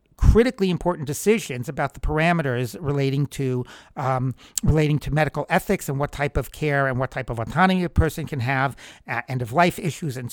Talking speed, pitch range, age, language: 185 wpm, 135-175 Hz, 60-79, English